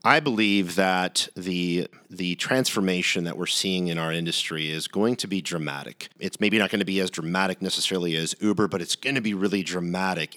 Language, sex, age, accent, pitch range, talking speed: English, male, 40-59, American, 85-95 Hz, 190 wpm